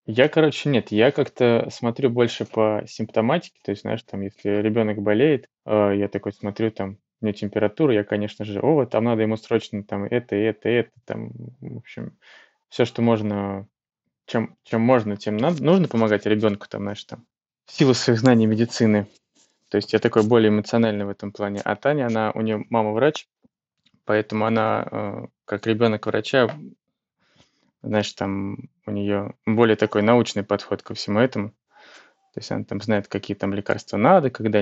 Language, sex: Russian, male